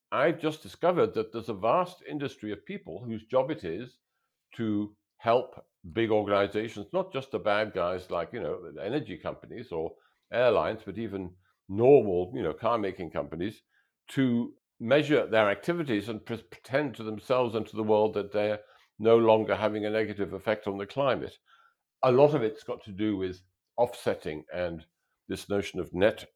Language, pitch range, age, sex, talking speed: English, 95-130 Hz, 60-79, male, 170 wpm